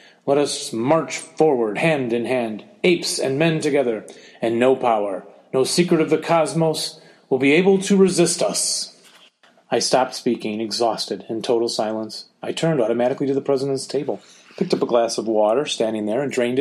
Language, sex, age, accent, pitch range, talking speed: English, male, 30-49, American, 120-160 Hz, 175 wpm